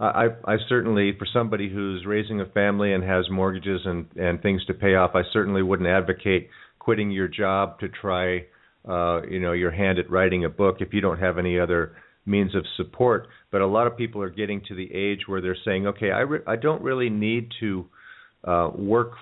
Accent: American